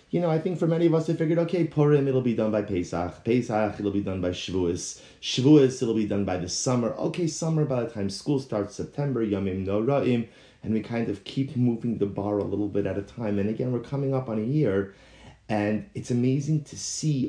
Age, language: 30-49, English